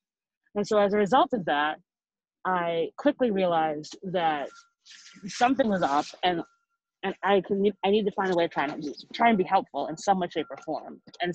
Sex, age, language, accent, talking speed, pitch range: female, 30-49, English, American, 205 wpm, 160-225 Hz